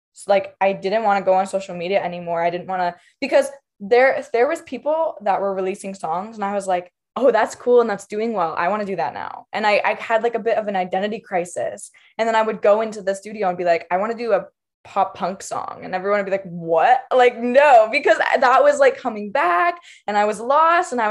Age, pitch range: 10-29, 185-235 Hz